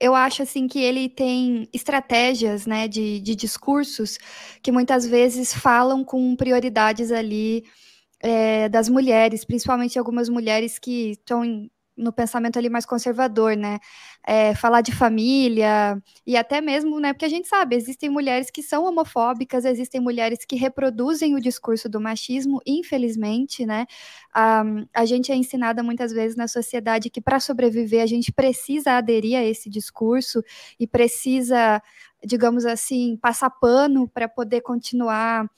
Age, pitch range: 20-39, 225-260 Hz